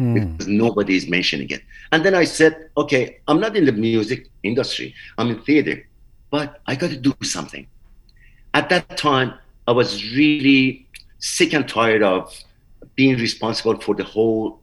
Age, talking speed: 50-69, 165 wpm